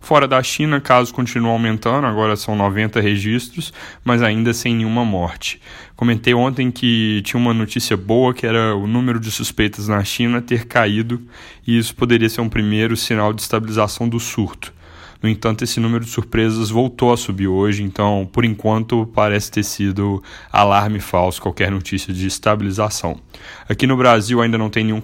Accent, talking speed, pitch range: Brazilian, 175 wpm, 100-115 Hz